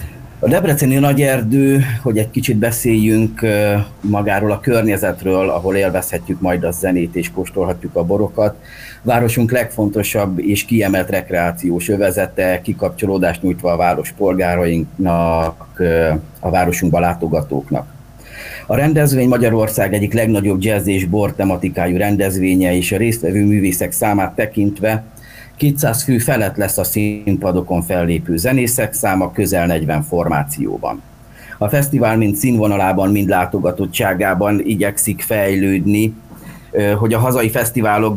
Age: 30-49